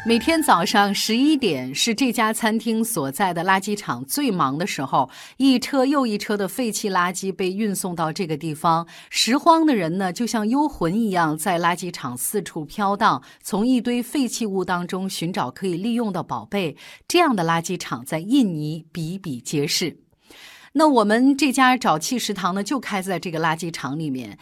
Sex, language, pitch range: female, Chinese, 170-250 Hz